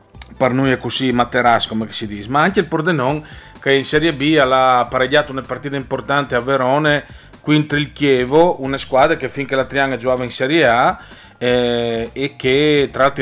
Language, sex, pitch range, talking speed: Italian, male, 120-150 Hz, 175 wpm